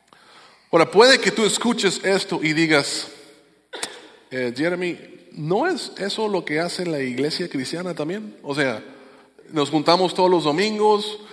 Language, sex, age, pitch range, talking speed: English, male, 30-49, 160-205 Hz, 145 wpm